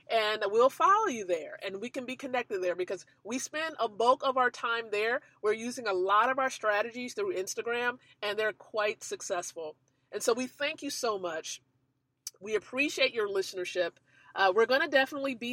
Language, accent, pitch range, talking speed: English, American, 200-260 Hz, 195 wpm